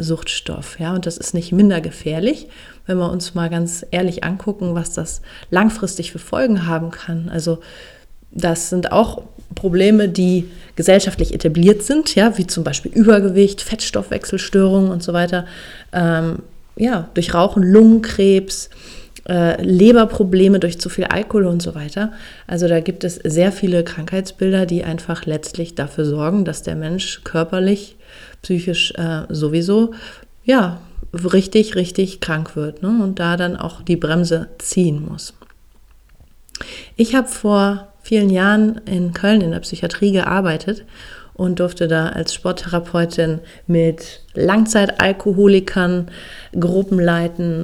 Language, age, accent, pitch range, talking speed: German, 30-49, German, 170-195 Hz, 135 wpm